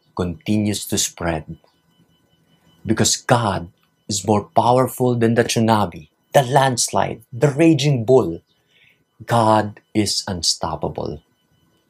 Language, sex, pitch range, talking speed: English, male, 105-135 Hz, 95 wpm